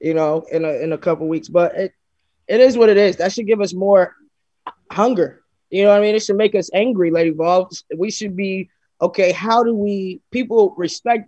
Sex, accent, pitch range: male, American, 165-205 Hz